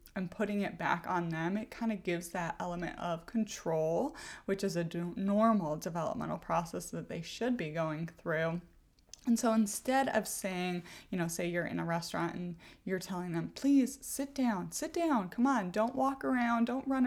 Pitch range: 175-235 Hz